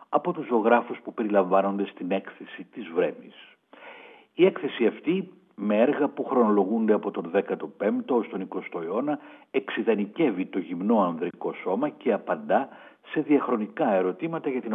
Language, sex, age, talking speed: Greek, male, 60-79, 140 wpm